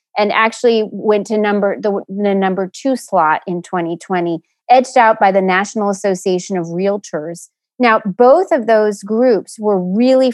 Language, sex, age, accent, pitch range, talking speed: English, female, 30-49, American, 195-230 Hz, 155 wpm